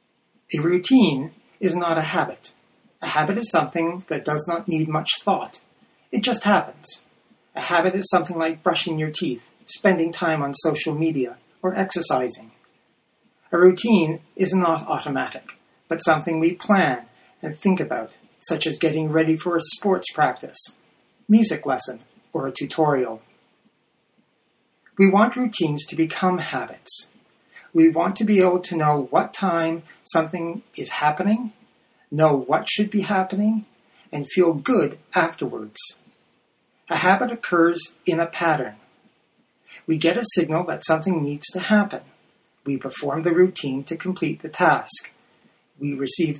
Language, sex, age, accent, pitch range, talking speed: English, male, 40-59, American, 155-195 Hz, 145 wpm